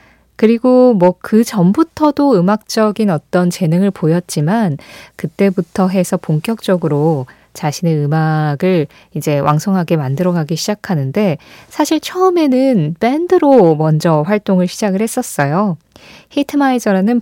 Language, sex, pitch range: Korean, female, 165-240 Hz